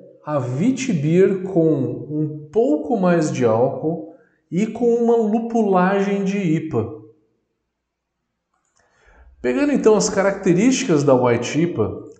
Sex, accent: male, Brazilian